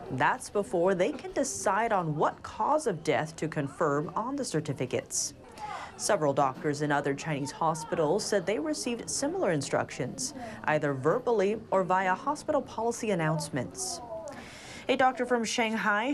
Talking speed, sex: 140 wpm, female